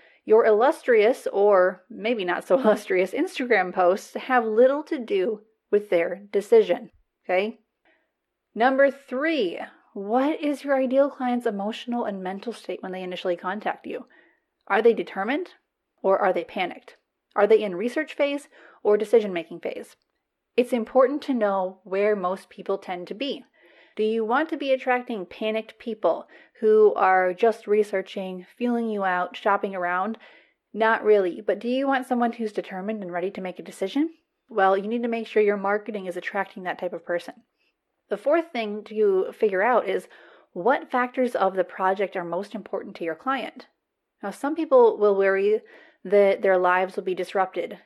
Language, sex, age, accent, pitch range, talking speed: English, female, 30-49, American, 190-260 Hz, 165 wpm